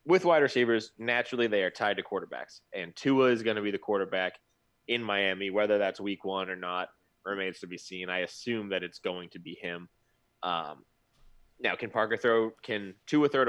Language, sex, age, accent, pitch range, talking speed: English, male, 20-39, American, 95-115 Hz, 200 wpm